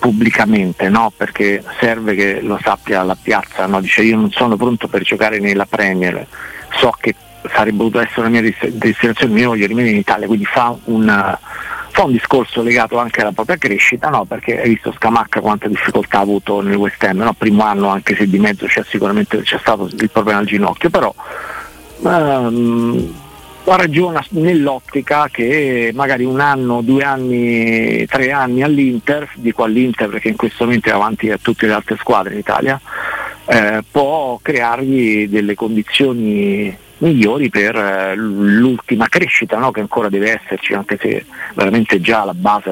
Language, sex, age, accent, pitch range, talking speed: Italian, male, 50-69, native, 105-125 Hz, 165 wpm